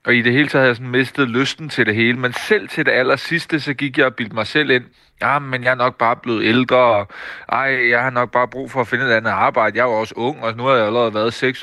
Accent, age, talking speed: native, 30-49, 300 wpm